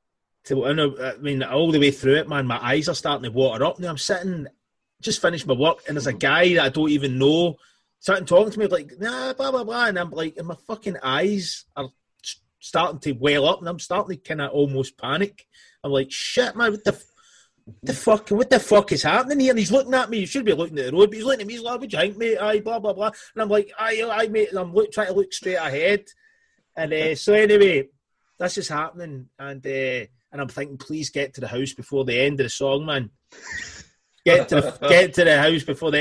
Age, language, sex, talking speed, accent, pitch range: 30-49, English, male, 250 wpm, British, 140-205 Hz